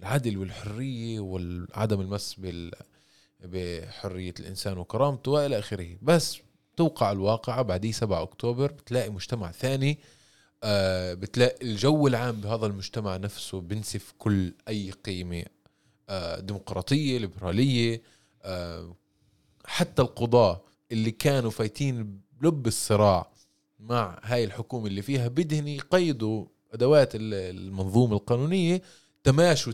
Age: 20-39